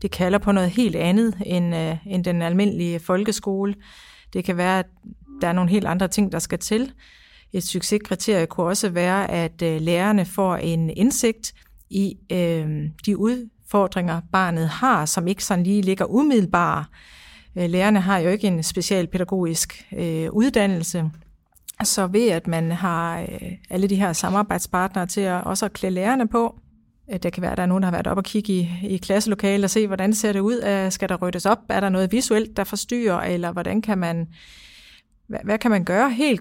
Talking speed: 190 wpm